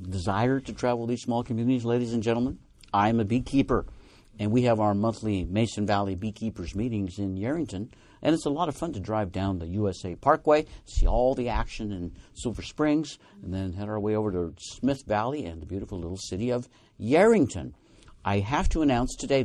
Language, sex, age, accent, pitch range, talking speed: English, male, 50-69, American, 95-125 Hz, 195 wpm